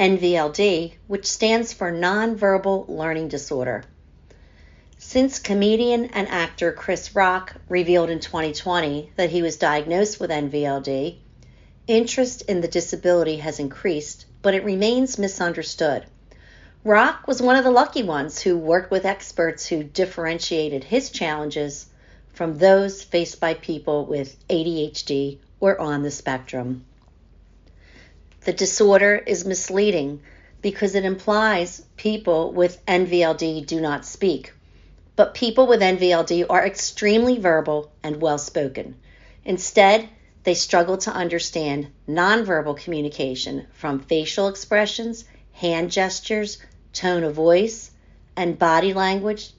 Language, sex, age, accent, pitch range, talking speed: English, female, 50-69, American, 155-200 Hz, 120 wpm